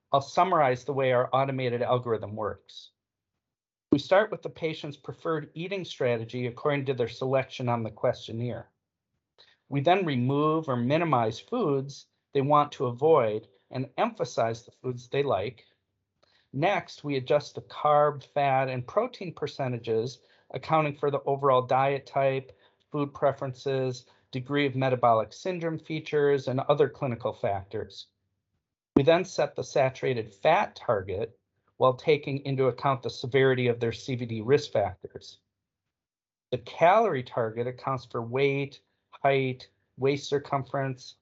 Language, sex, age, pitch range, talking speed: English, male, 40-59, 120-140 Hz, 135 wpm